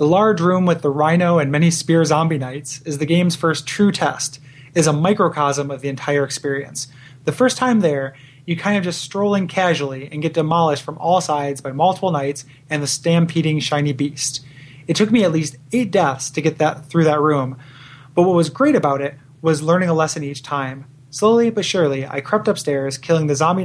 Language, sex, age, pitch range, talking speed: English, male, 30-49, 140-175 Hz, 215 wpm